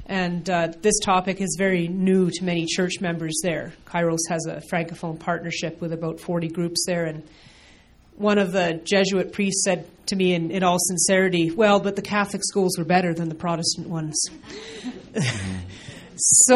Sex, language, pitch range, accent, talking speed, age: female, English, 165-190 Hz, American, 170 wpm, 30-49